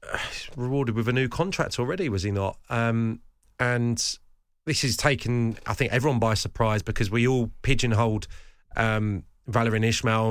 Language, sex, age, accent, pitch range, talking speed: English, male, 30-49, British, 105-125 Hz, 150 wpm